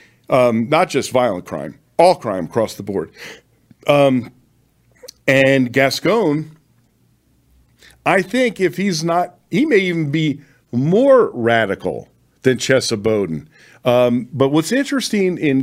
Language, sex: English, male